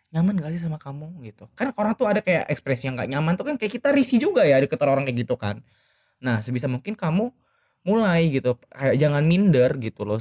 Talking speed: 225 wpm